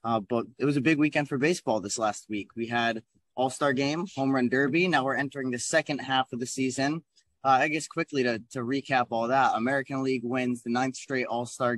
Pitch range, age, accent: 120-140 Hz, 20-39, American